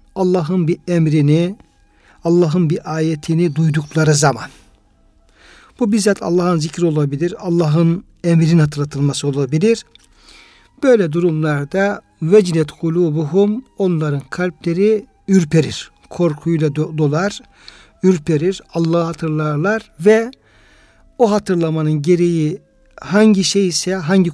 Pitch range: 155-200 Hz